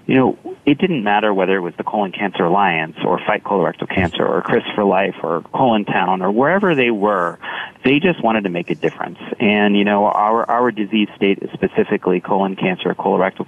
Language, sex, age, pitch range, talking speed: English, male, 30-49, 95-110 Hz, 205 wpm